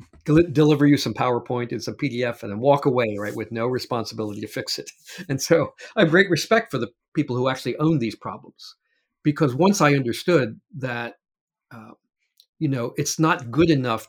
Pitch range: 115-155 Hz